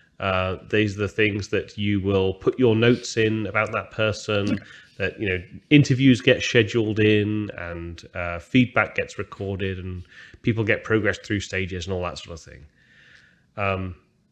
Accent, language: British, English